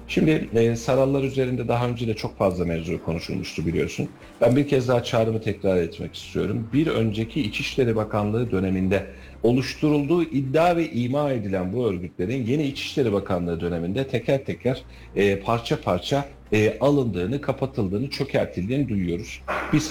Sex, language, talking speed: male, Turkish, 140 wpm